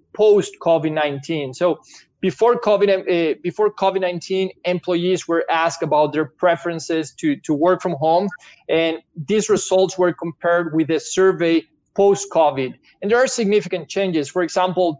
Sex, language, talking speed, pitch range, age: male, English, 130 wpm, 160-190 Hz, 20-39